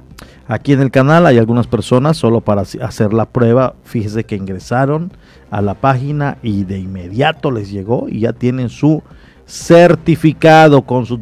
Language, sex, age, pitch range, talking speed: Spanish, male, 50-69, 105-155 Hz, 160 wpm